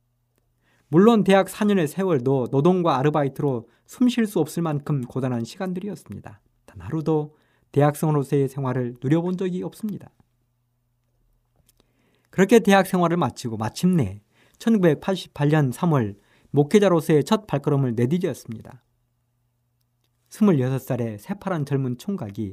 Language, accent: Korean, native